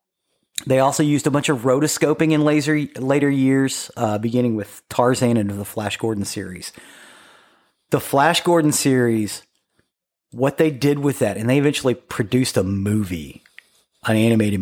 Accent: American